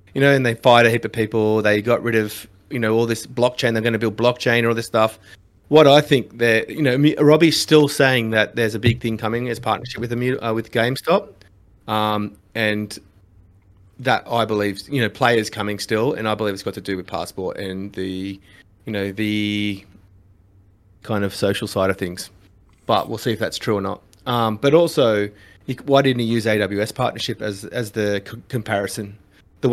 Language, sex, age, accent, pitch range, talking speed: English, male, 30-49, Australian, 100-120 Hz, 210 wpm